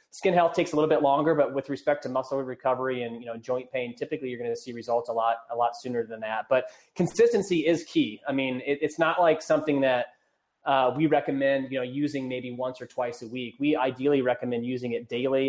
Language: English